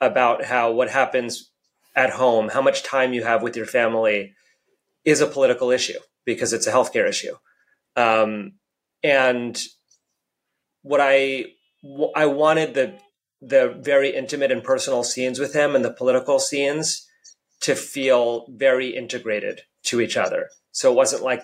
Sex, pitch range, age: male, 115-155 Hz, 30-49